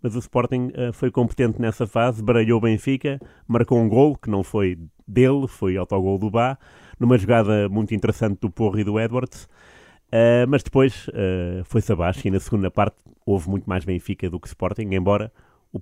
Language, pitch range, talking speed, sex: Portuguese, 100-120 Hz, 180 wpm, male